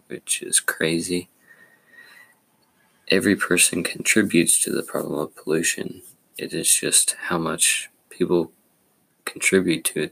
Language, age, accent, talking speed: English, 20-39, American, 120 wpm